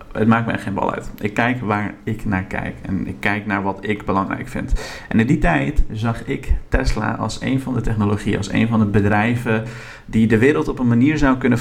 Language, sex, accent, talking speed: Dutch, male, Dutch, 235 wpm